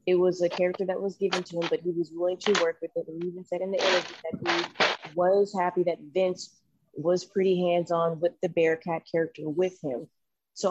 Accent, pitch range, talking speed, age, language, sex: American, 165-190 Hz, 225 wpm, 20-39, English, female